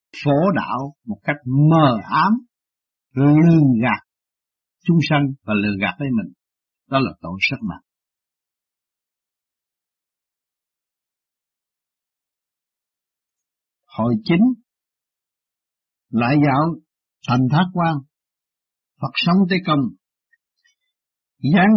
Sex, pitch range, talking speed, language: male, 120-170 Hz, 90 wpm, Vietnamese